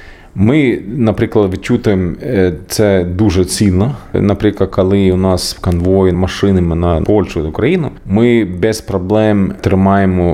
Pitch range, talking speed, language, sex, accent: 85-105 Hz, 110 wpm, Ukrainian, male, native